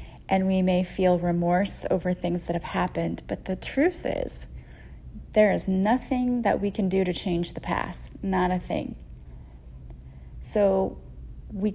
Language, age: English, 30-49